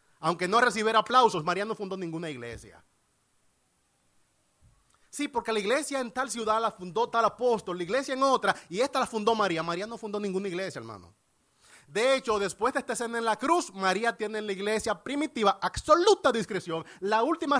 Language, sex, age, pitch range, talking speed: Spanish, male, 30-49, 185-245 Hz, 185 wpm